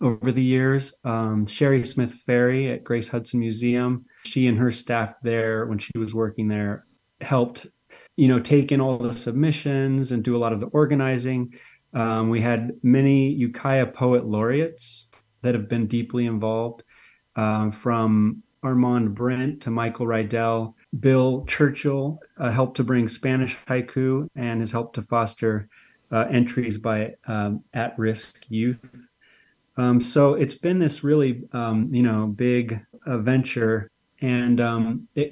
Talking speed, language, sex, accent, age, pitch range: 150 wpm, English, male, American, 30-49, 115-130 Hz